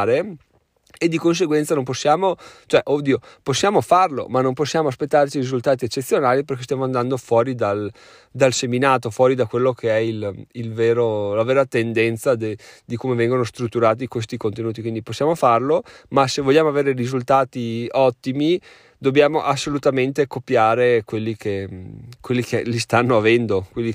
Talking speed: 140 wpm